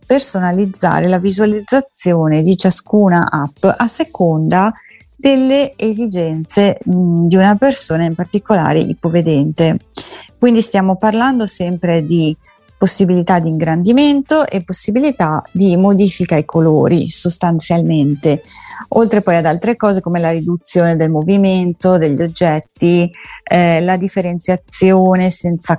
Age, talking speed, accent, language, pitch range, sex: 30-49, 110 wpm, native, Italian, 165-200 Hz, female